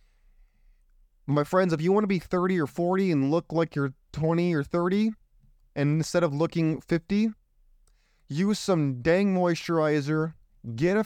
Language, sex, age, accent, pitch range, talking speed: English, male, 30-49, American, 125-170 Hz, 150 wpm